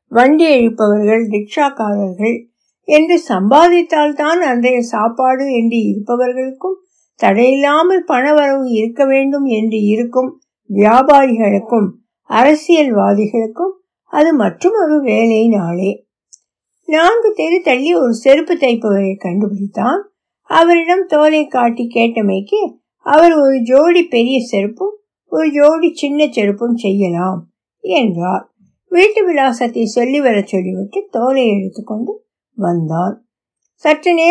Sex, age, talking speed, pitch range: female, 60-79, 55 wpm, 215-320 Hz